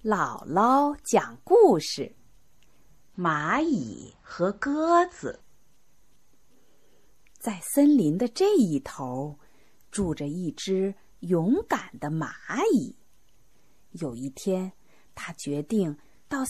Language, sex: Chinese, female